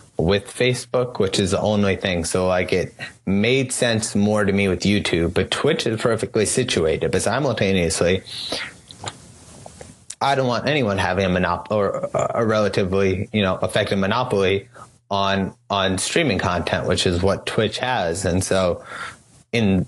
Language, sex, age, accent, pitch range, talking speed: English, male, 30-49, American, 95-115 Hz, 150 wpm